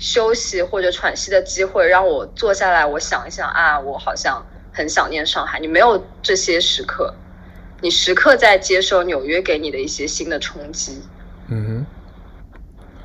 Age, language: 20-39, Chinese